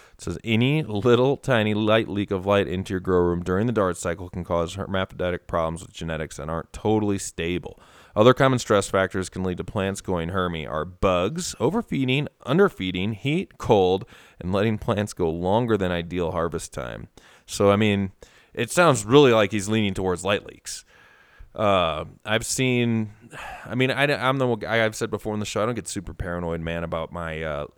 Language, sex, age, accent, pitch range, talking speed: English, male, 20-39, American, 90-115 Hz, 190 wpm